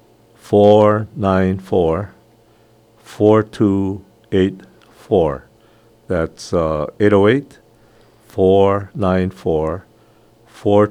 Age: 50-69